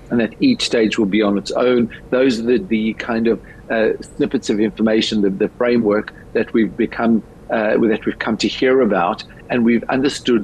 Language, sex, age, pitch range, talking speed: English, male, 50-69, 105-125 Hz, 200 wpm